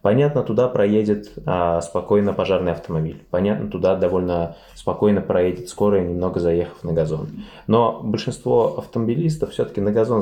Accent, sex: native, male